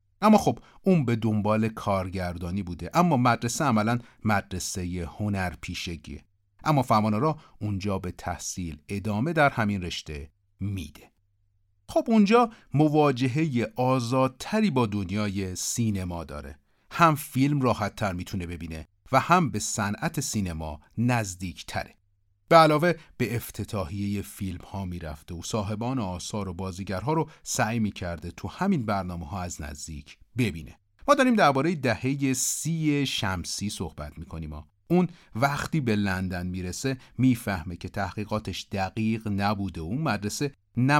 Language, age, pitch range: Persian, 40-59, 90-125 Hz